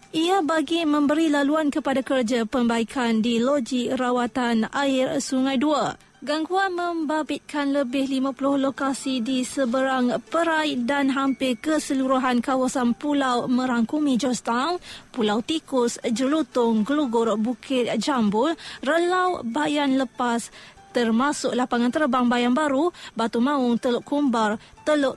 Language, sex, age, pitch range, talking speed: Malay, female, 20-39, 250-300 Hz, 110 wpm